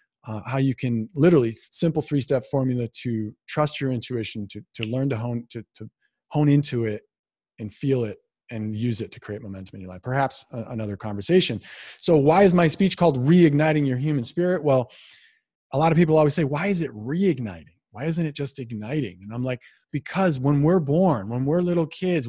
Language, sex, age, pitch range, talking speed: English, male, 30-49, 135-190 Hz, 200 wpm